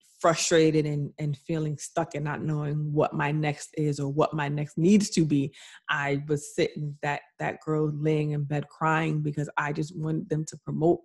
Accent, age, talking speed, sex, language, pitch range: American, 30-49, 195 wpm, female, English, 155-185 Hz